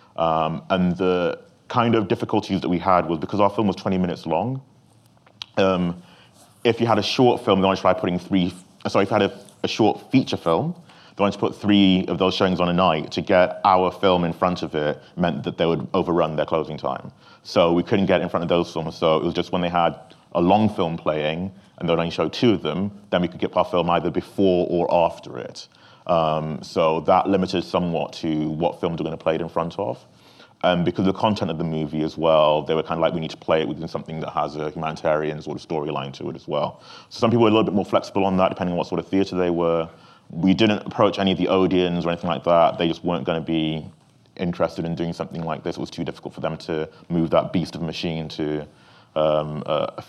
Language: English